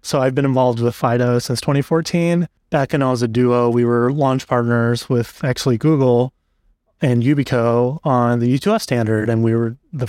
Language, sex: English, male